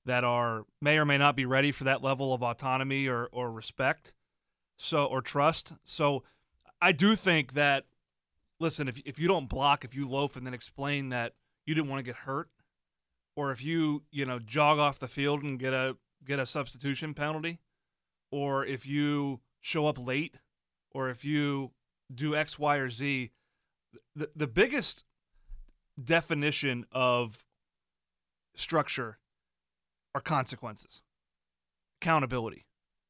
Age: 30-49